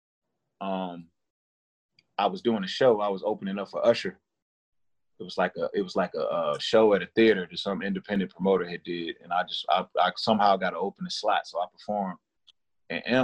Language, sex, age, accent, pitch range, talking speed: English, male, 30-49, American, 95-150 Hz, 210 wpm